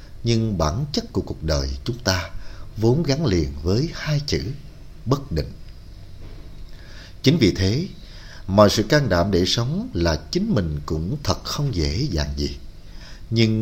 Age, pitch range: 60-79, 75-110 Hz